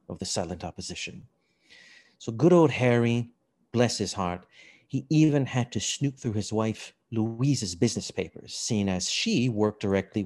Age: 30-49